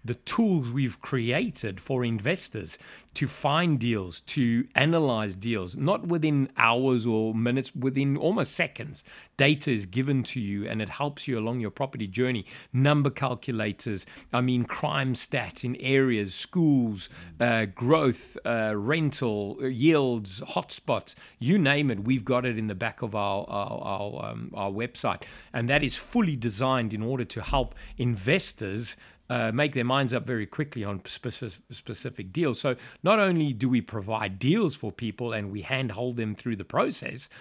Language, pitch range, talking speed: English, 115-145 Hz, 160 wpm